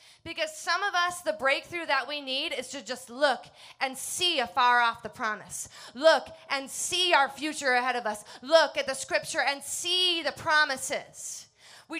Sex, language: female, English